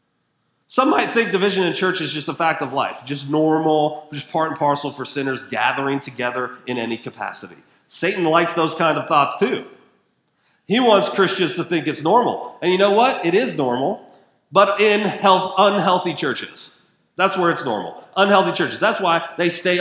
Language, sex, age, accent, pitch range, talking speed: English, male, 30-49, American, 135-195 Hz, 180 wpm